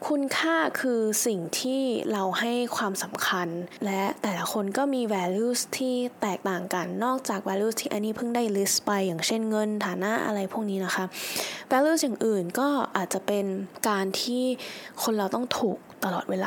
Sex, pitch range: female, 195-240 Hz